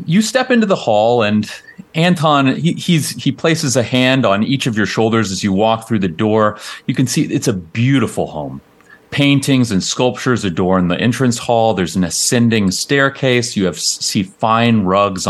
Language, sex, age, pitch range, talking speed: English, male, 30-49, 105-155 Hz, 185 wpm